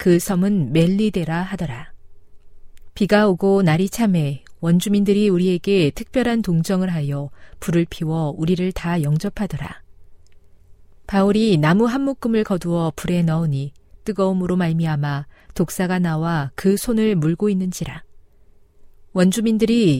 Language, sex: Korean, female